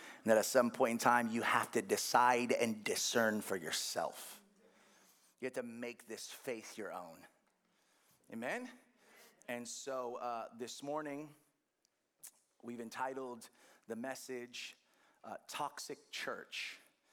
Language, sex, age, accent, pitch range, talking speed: English, male, 30-49, American, 120-150 Hz, 125 wpm